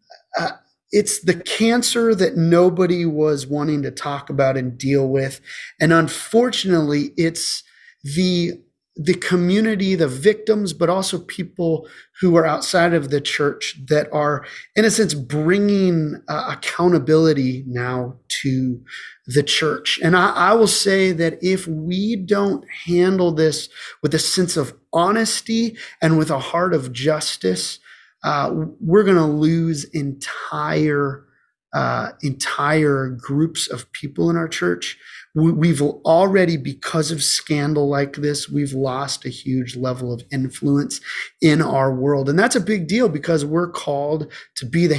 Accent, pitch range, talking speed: American, 140-185 Hz, 145 wpm